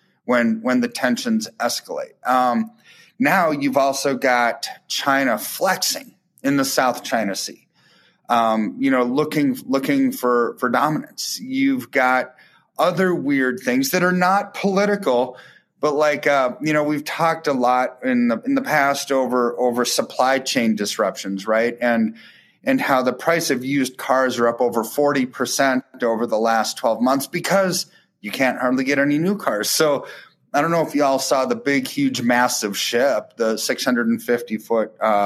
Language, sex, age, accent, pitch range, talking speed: English, male, 30-49, American, 120-165 Hz, 160 wpm